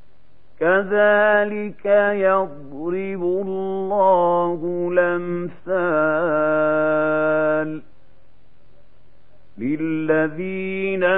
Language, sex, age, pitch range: Arabic, male, 50-69, 175-195 Hz